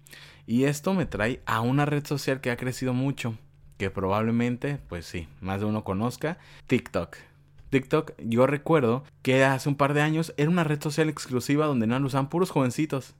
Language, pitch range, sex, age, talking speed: Spanish, 100-135 Hz, male, 30-49, 185 wpm